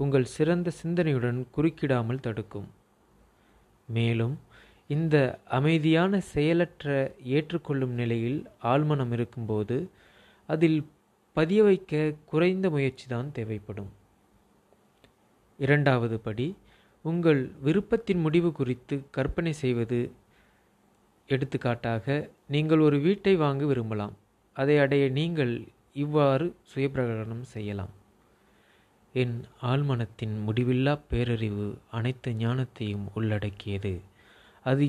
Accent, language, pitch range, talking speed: native, Tamil, 115-145 Hz, 75 wpm